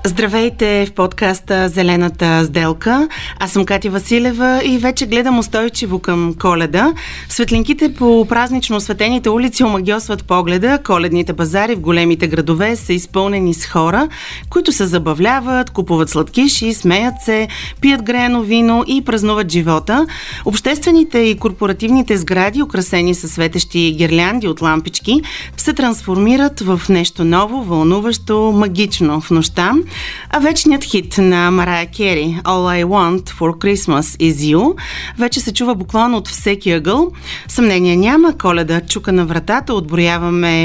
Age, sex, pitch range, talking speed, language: 30-49, female, 175-240 Hz, 135 wpm, Bulgarian